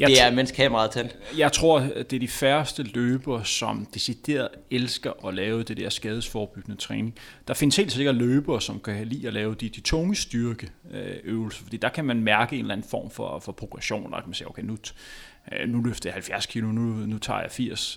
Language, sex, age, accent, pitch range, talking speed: Danish, male, 30-49, native, 110-130 Hz, 200 wpm